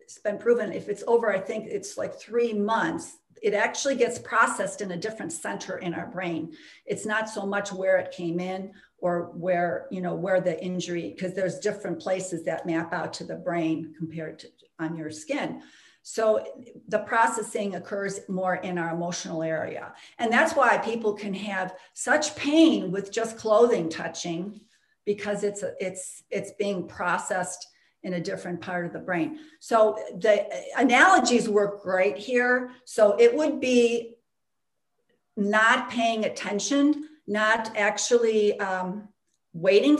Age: 50-69